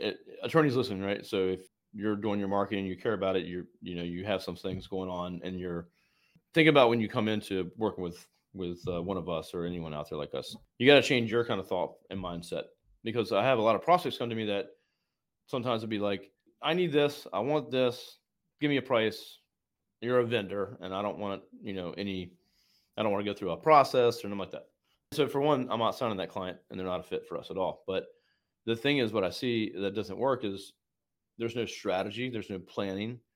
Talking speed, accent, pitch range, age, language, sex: 245 wpm, American, 95-125 Hz, 30-49, English, male